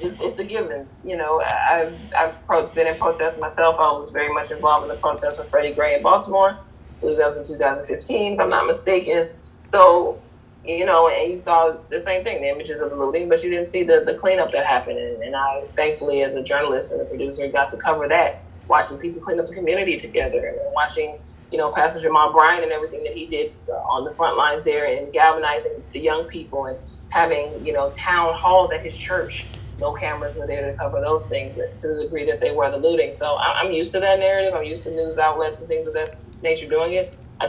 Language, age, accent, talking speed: English, 20-39, American, 225 wpm